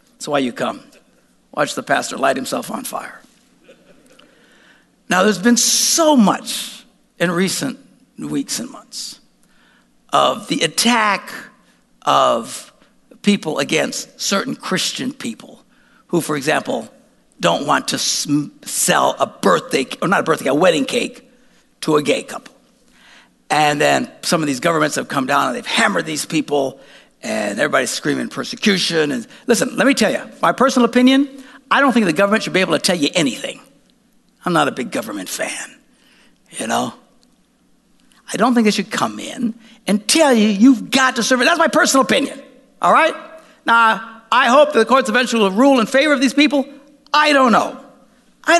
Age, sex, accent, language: 60-79, male, American, English